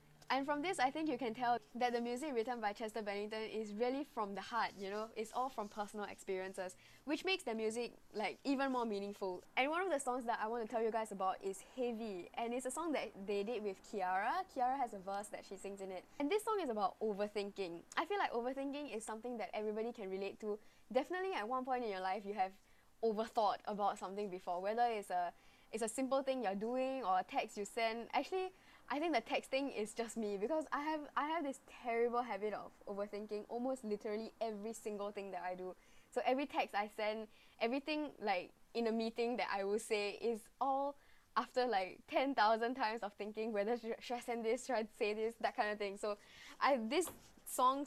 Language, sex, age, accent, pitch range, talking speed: English, female, 10-29, Malaysian, 205-255 Hz, 225 wpm